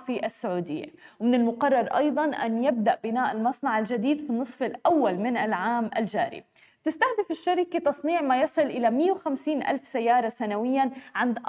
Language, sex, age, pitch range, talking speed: Arabic, female, 20-39, 235-285 Hz, 140 wpm